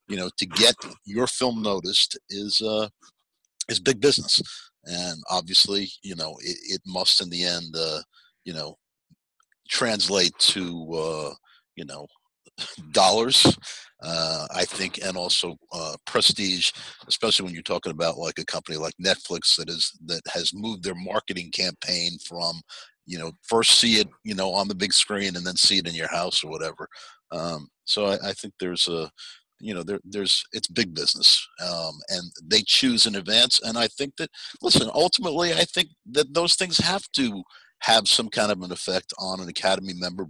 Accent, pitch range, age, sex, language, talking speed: American, 90-120 Hz, 50-69, male, English, 175 wpm